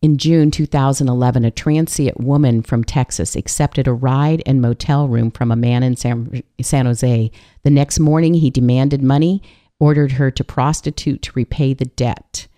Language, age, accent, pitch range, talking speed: English, 50-69, American, 120-150 Hz, 165 wpm